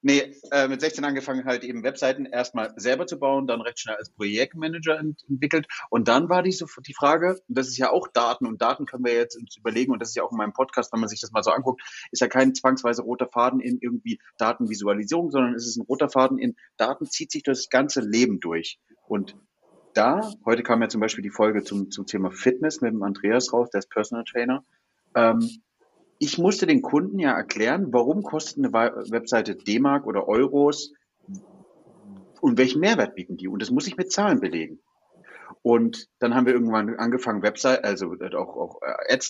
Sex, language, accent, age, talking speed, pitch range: male, German, German, 30-49, 205 wpm, 120-170 Hz